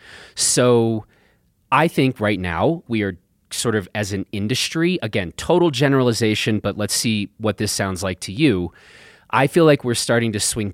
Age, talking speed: 30-49, 175 wpm